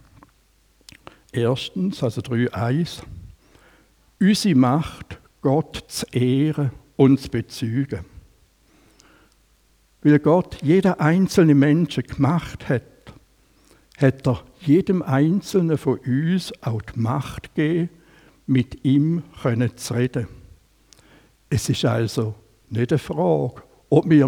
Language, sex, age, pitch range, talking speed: German, male, 60-79, 125-155 Hz, 95 wpm